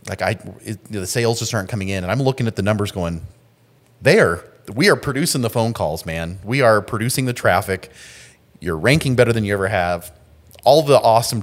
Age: 30-49